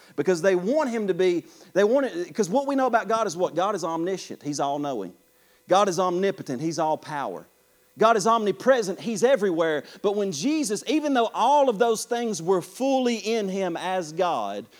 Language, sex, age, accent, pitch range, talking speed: English, male, 40-59, American, 185-255 Hz, 185 wpm